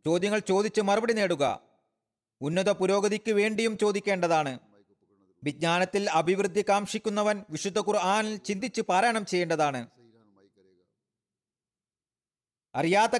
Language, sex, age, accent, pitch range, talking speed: Malayalam, male, 40-59, native, 130-195 Hz, 75 wpm